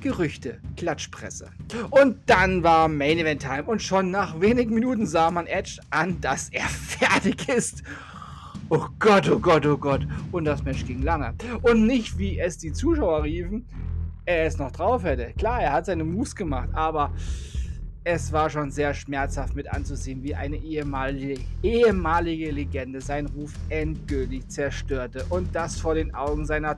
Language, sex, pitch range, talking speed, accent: German, male, 110-180 Hz, 165 wpm, German